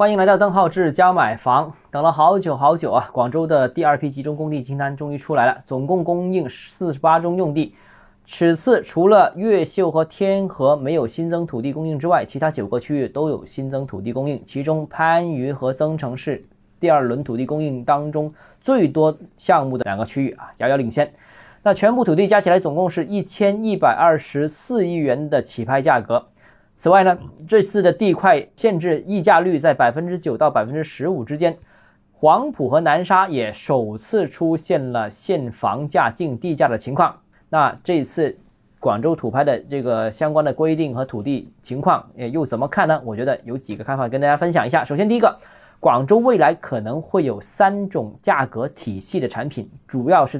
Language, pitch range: Chinese, 135-180 Hz